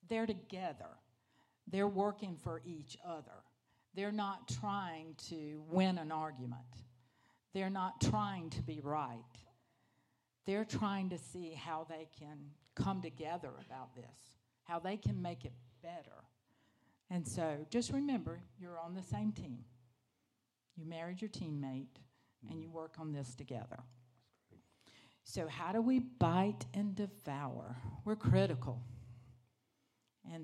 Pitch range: 125-190 Hz